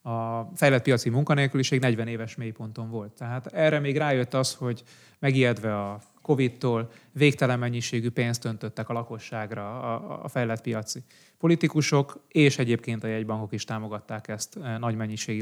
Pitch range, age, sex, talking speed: 115-145 Hz, 30-49, male, 140 wpm